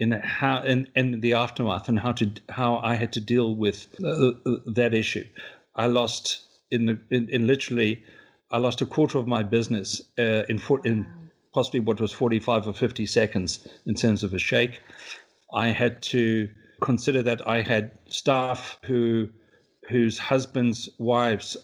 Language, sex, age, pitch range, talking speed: English, male, 50-69, 110-125 Hz, 165 wpm